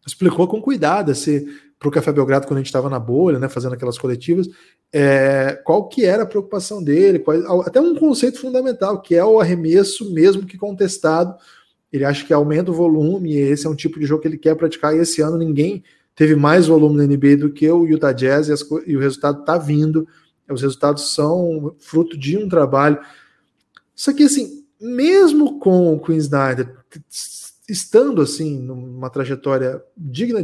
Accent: Brazilian